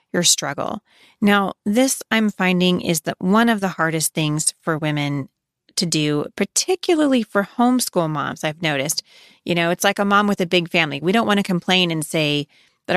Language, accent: English, American